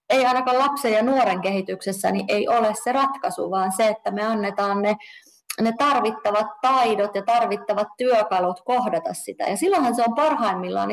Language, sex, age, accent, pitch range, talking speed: Finnish, female, 30-49, native, 175-225 Hz, 165 wpm